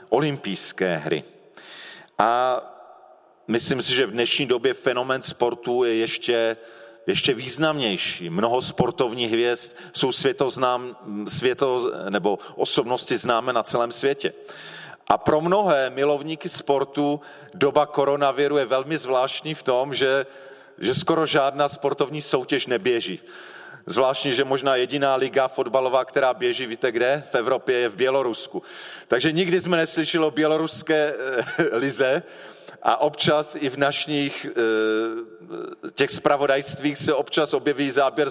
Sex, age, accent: male, 40-59, native